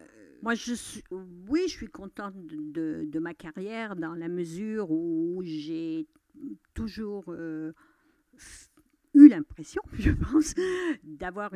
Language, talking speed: French, 110 wpm